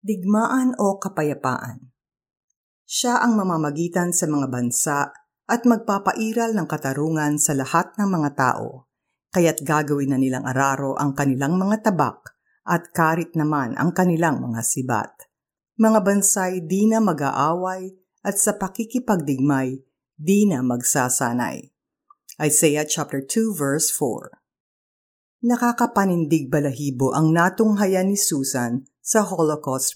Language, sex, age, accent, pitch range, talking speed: Filipino, female, 50-69, native, 140-190 Hz, 115 wpm